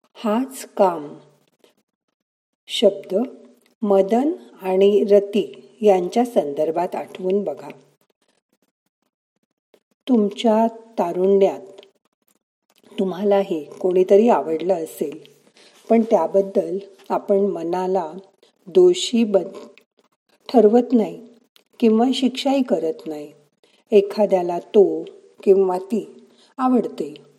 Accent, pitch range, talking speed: native, 185-225 Hz, 75 wpm